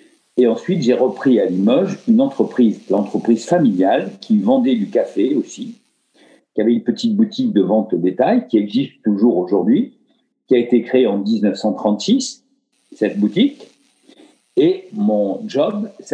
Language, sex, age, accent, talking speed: French, male, 50-69, French, 150 wpm